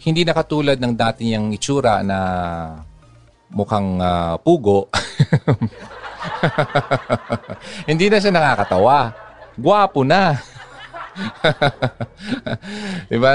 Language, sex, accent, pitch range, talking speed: Filipino, male, native, 100-135 Hz, 80 wpm